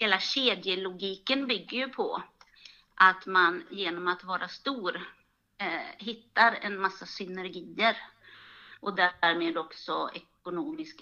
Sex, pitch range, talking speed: female, 175-220 Hz, 105 wpm